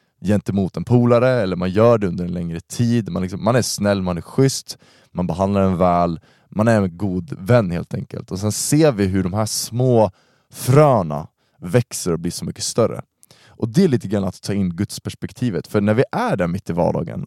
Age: 20-39